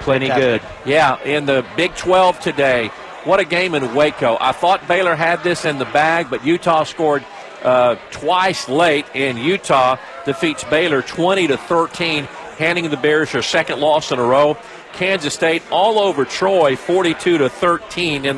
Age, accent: 50-69, American